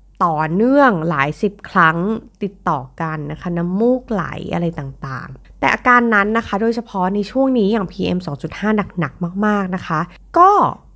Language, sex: Thai, female